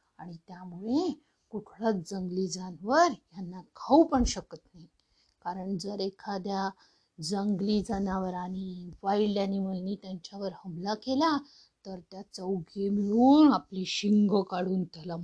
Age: 50-69